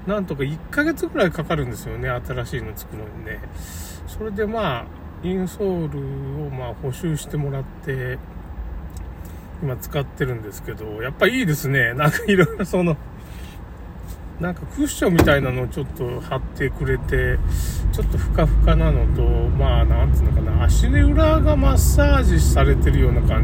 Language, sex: Japanese, male